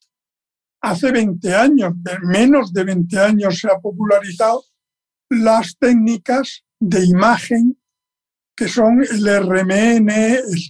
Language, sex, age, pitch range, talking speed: Spanish, male, 60-79, 210-270 Hz, 105 wpm